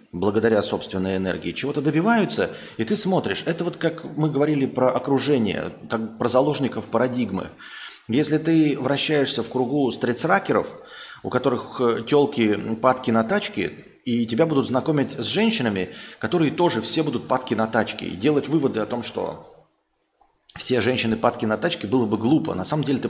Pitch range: 115-155 Hz